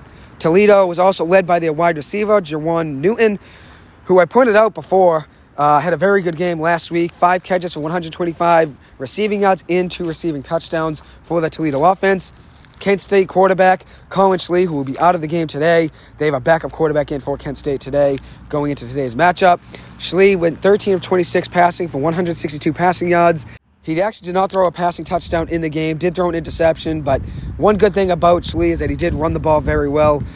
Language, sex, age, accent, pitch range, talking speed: English, male, 30-49, American, 145-180 Hz, 205 wpm